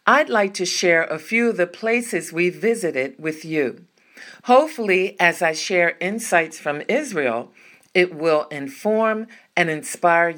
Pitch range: 160-220 Hz